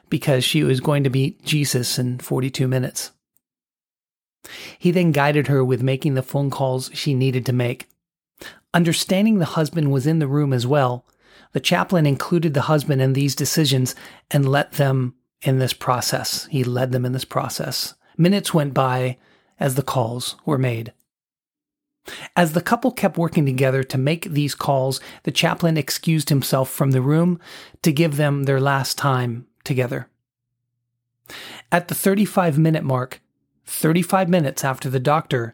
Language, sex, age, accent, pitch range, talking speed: English, male, 40-59, American, 130-160 Hz, 155 wpm